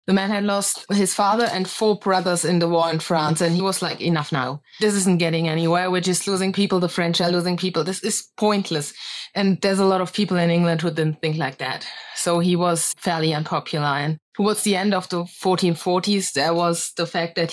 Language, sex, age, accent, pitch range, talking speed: English, female, 20-39, German, 165-190 Hz, 225 wpm